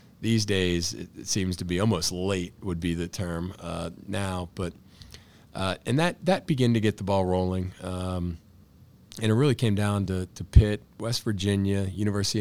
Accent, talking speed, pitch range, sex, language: American, 180 wpm, 90-100 Hz, male, English